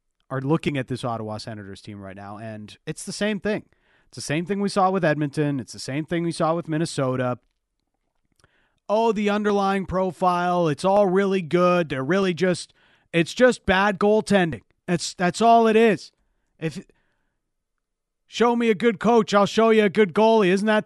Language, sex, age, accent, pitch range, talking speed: English, male, 40-59, American, 150-215 Hz, 185 wpm